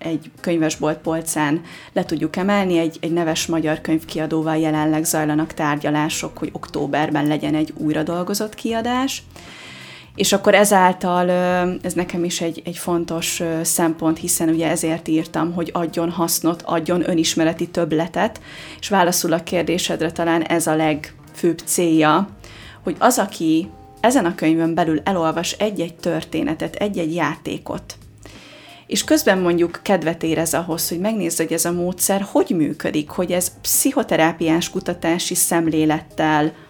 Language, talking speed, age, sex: Hungarian, 130 wpm, 30-49, female